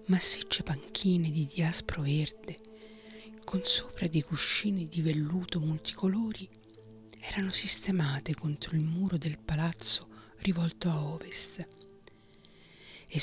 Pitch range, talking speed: 150-190 Hz, 105 wpm